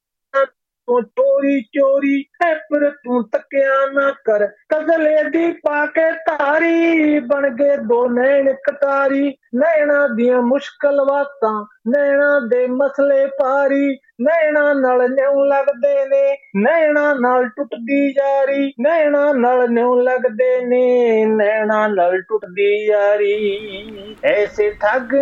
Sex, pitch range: male, 245-285 Hz